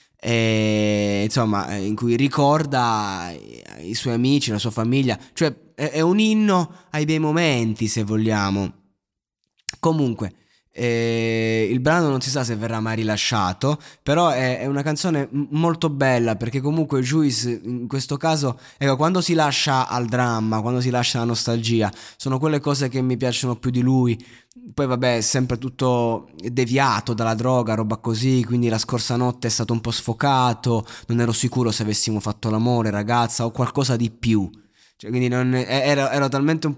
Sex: male